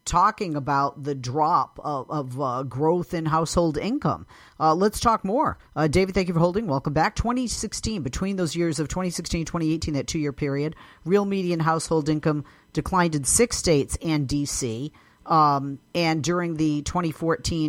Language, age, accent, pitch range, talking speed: English, 40-59, American, 145-175 Hz, 165 wpm